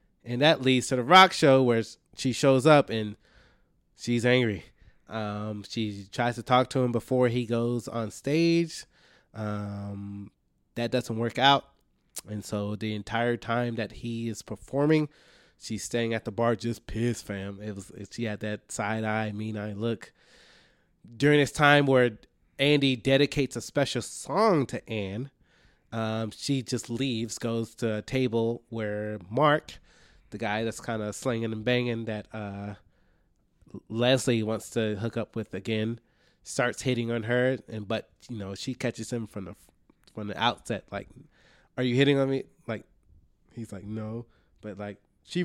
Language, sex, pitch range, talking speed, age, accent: English, male, 105-130 Hz, 160 wpm, 20-39, American